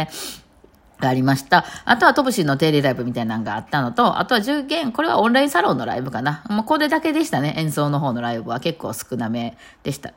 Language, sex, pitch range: Japanese, female, 130-200 Hz